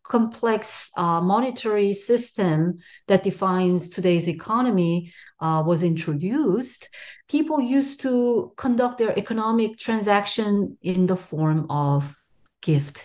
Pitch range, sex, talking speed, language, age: 160-220 Hz, female, 105 wpm, English, 40-59